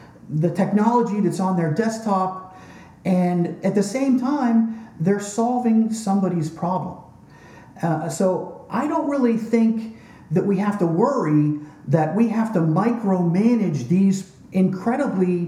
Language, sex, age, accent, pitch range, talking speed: English, male, 50-69, American, 165-230 Hz, 130 wpm